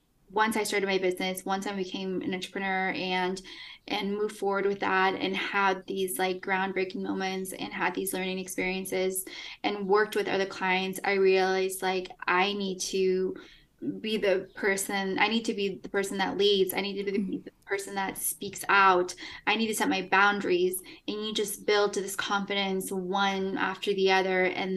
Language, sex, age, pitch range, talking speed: English, female, 10-29, 185-210 Hz, 180 wpm